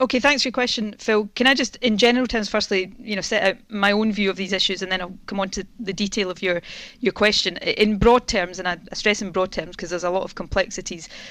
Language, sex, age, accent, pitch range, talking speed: English, female, 30-49, British, 175-205 Hz, 265 wpm